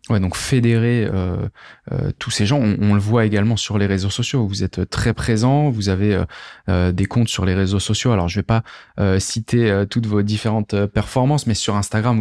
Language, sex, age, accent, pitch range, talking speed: French, male, 20-39, French, 100-120 Hz, 220 wpm